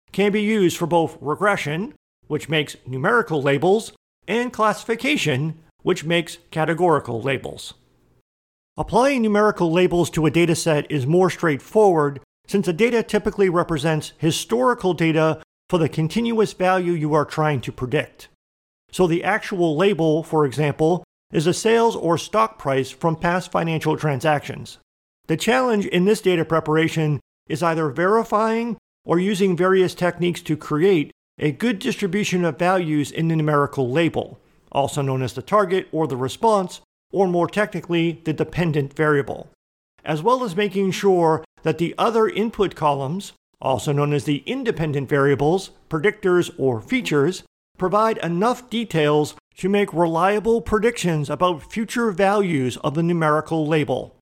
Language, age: English, 50-69